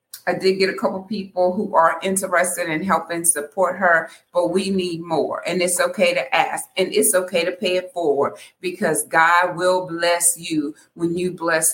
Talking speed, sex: 190 wpm, female